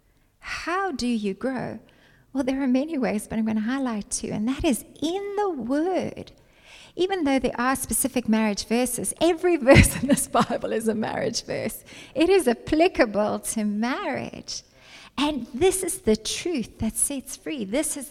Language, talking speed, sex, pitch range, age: English, 170 wpm, female, 215-280 Hz, 30-49